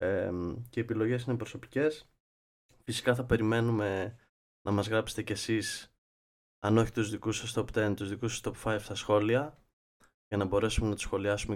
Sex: male